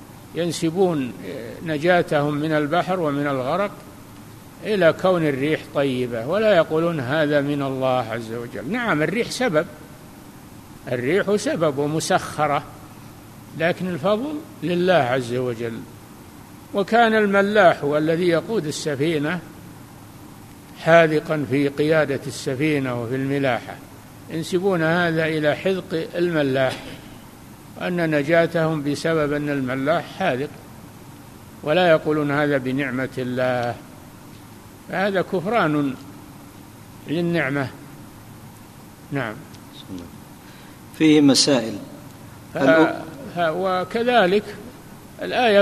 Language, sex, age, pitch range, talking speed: Arabic, male, 60-79, 135-180 Hz, 85 wpm